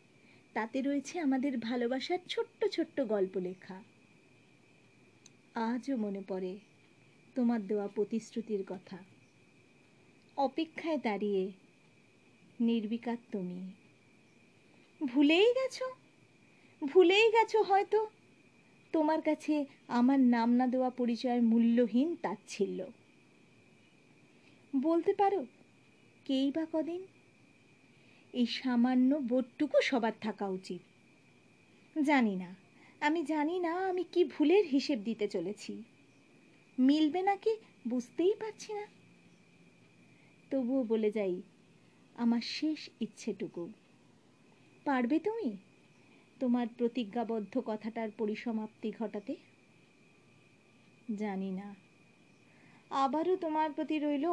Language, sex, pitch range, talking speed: Bengali, female, 215-310 Hz, 90 wpm